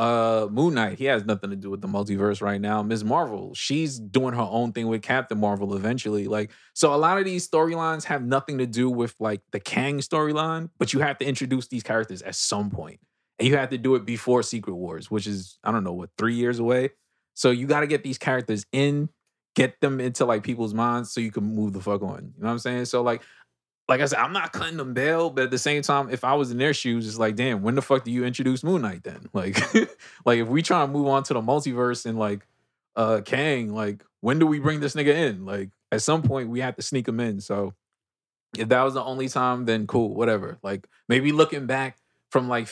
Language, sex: English, male